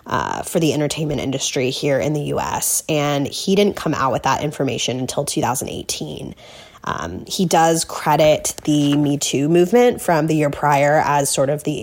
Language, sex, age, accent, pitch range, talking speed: English, female, 20-39, American, 145-170 Hz, 180 wpm